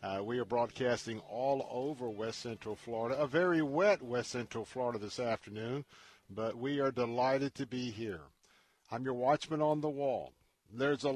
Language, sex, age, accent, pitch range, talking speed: English, male, 50-69, American, 120-150 Hz, 170 wpm